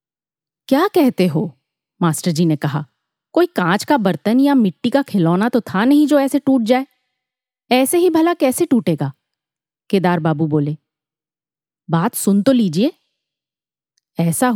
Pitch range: 180-275 Hz